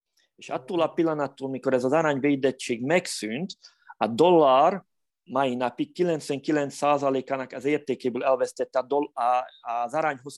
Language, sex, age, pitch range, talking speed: Hungarian, male, 30-49, 125-150 Hz, 110 wpm